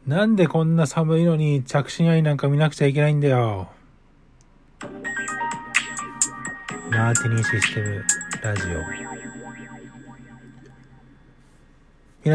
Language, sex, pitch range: Japanese, male, 110-145 Hz